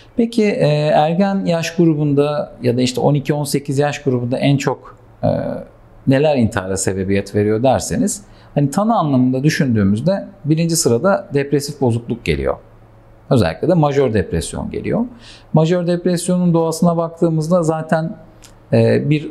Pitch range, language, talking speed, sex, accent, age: 120-170 Hz, Turkish, 115 wpm, male, native, 50-69